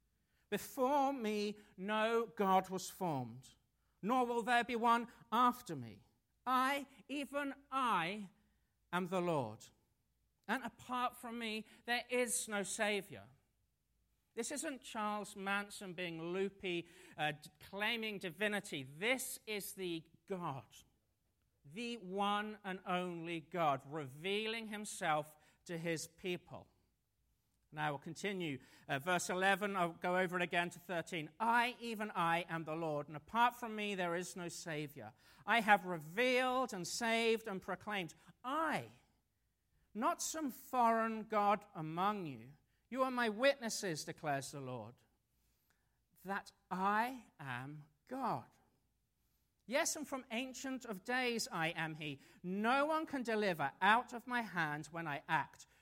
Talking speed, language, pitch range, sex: 130 wpm, English, 160-230 Hz, male